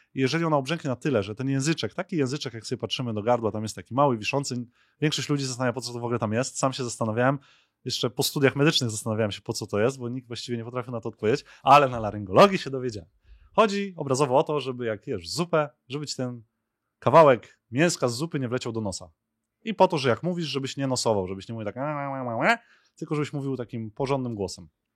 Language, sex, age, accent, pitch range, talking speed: Polish, male, 20-39, native, 115-150 Hz, 230 wpm